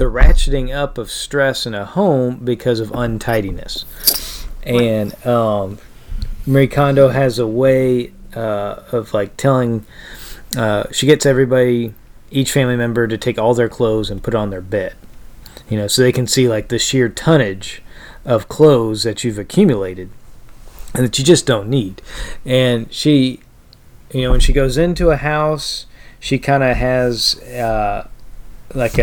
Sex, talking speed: male, 155 wpm